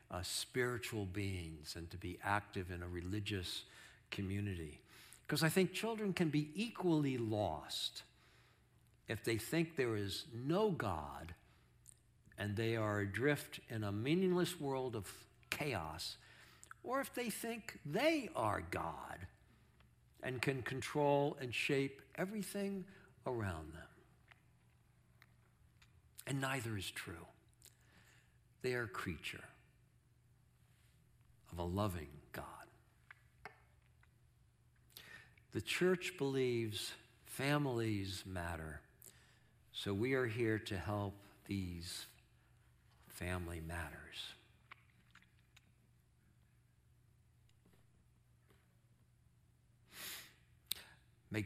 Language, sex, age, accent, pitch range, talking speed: English, male, 60-79, American, 95-130 Hz, 90 wpm